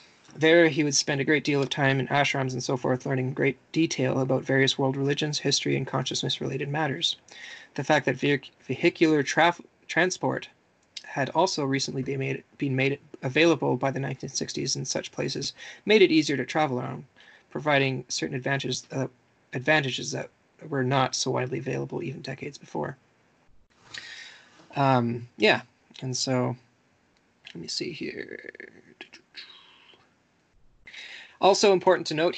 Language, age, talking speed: English, 20-39, 140 wpm